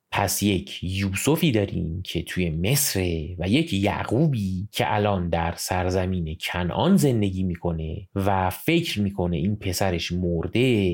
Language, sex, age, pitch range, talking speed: Persian, male, 30-49, 90-135 Hz, 125 wpm